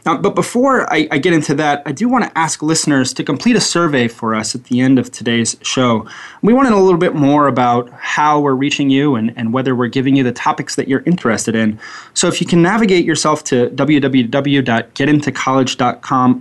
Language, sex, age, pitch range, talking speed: English, male, 20-39, 120-155 Hz, 215 wpm